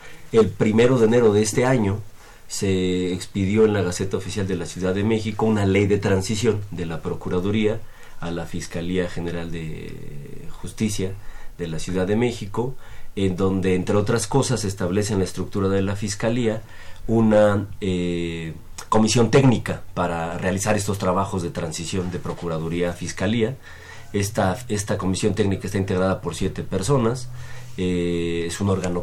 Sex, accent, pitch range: male, Mexican, 95-110 Hz